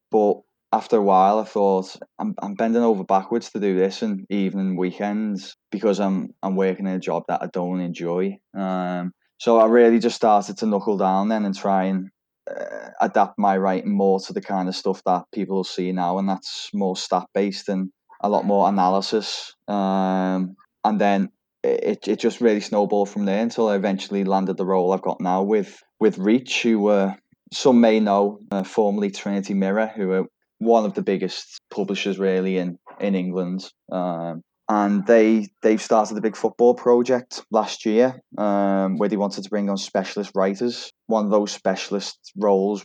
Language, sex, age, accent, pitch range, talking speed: English, male, 20-39, British, 95-105 Hz, 185 wpm